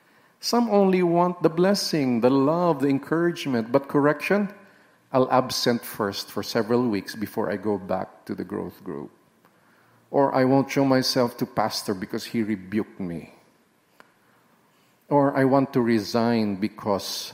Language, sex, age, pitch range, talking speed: English, male, 50-69, 125-185 Hz, 145 wpm